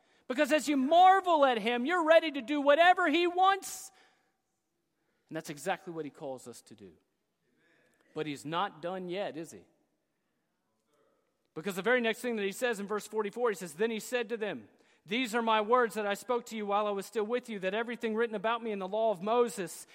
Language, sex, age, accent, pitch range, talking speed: English, male, 40-59, American, 200-245 Hz, 215 wpm